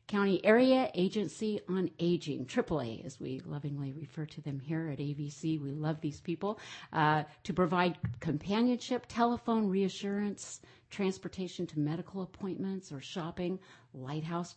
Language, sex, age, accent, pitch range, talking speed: English, female, 50-69, American, 150-185 Hz, 130 wpm